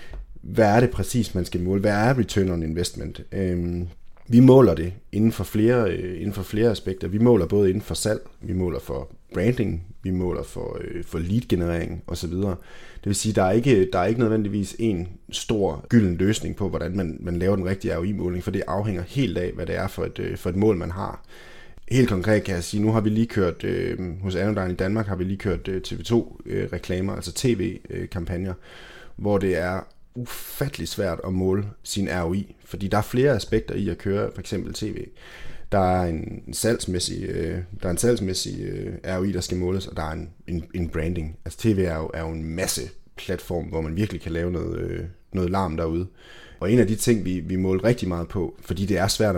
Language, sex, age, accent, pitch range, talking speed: Danish, male, 30-49, native, 85-105 Hz, 210 wpm